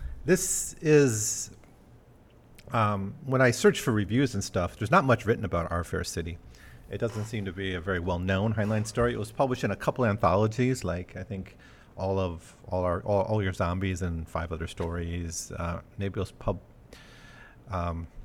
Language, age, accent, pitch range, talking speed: English, 40-59, American, 90-115 Hz, 185 wpm